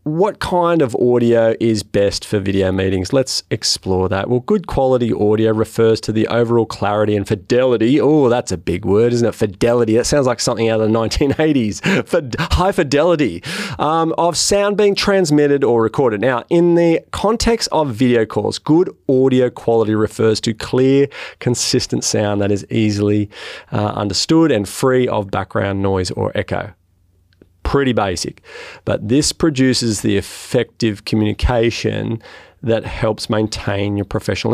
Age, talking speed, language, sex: 30-49, 155 wpm, English, male